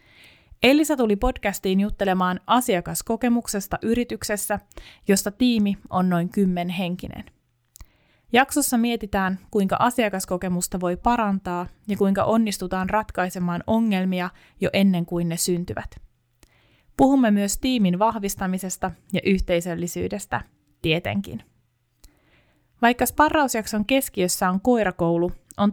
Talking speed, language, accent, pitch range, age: 95 wpm, Finnish, native, 175-225 Hz, 20-39